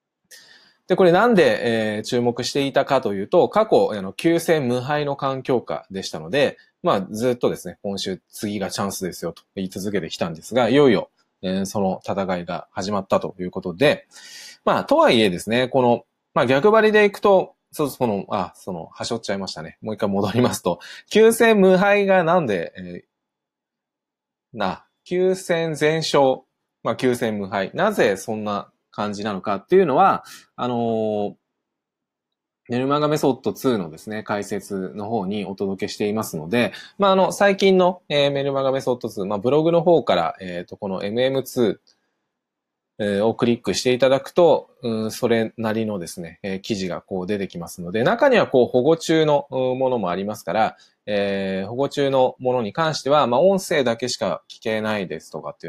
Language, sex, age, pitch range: Japanese, male, 20-39, 100-150 Hz